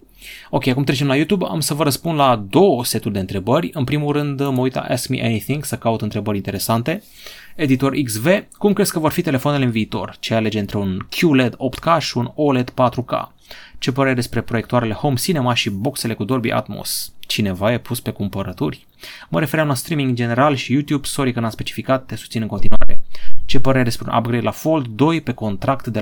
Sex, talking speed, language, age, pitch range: male, 205 wpm, Romanian, 30-49, 110-145 Hz